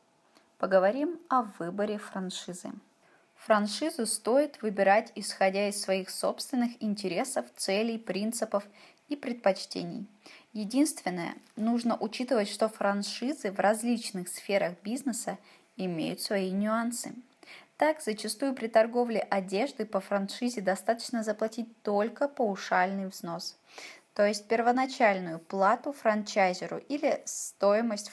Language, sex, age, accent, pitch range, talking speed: Russian, female, 20-39, native, 195-245 Hz, 100 wpm